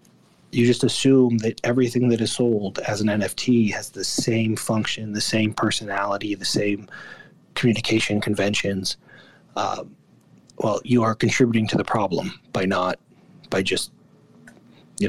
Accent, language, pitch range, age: American, English, 110-130 Hz, 30-49